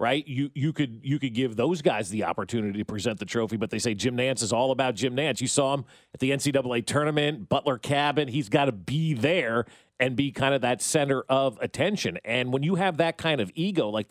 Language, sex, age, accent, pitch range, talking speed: English, male, 40-59, American, 125-170 Hz, 230 wpm